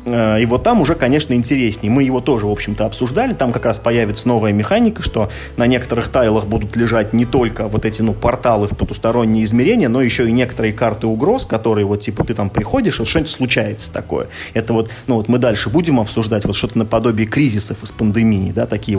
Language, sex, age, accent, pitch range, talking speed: Russian, male, 20-39, native, 105-125 Hz, 200 wpm